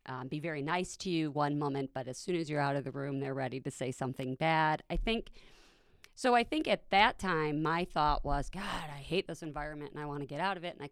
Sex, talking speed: female, 270 wpm